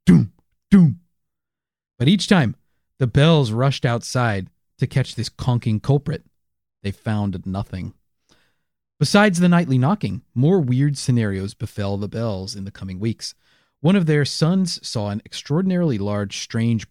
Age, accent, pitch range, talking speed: 40-59, American, 105-155 Hz, 140 wpm